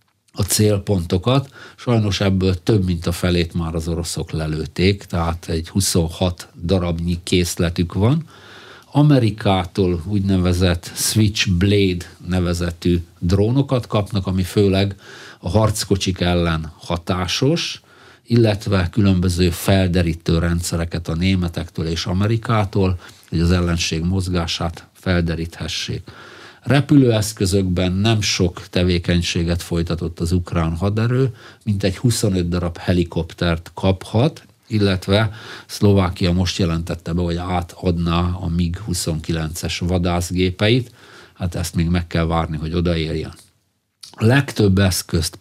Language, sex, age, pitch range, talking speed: Hungarian, male, 50-69, 85-105 Hz, 100 wpm